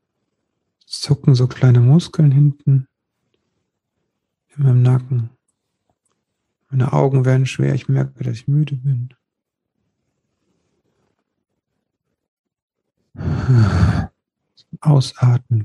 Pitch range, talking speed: 120-140 Hz, 75 wpm